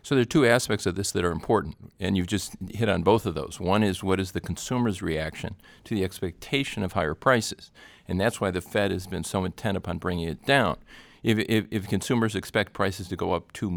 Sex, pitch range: male, 85-105 Hz